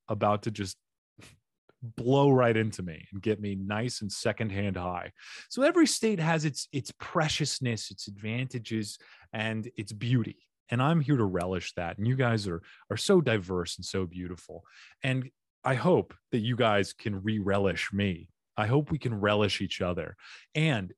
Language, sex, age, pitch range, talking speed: English, male, 30-49, 100-130 Hz, 170 wpm